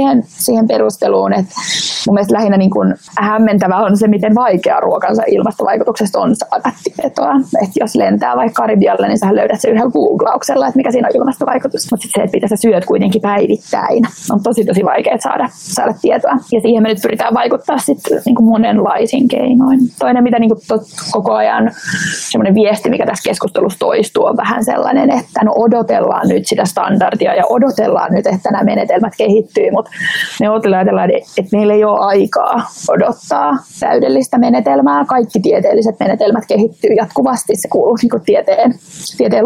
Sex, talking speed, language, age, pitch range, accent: female, 160 wpm, Finnish, 20-39, 205-245 Hz, native